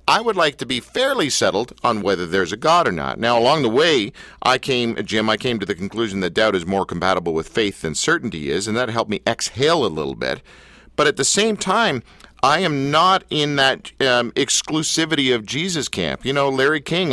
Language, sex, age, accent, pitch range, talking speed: English, male, 50-69, American, 120-180 Hz, 220 wpm